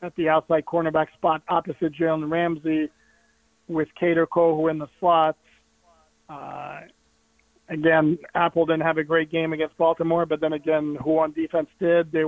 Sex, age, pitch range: male, 40-59, 155-165 Hz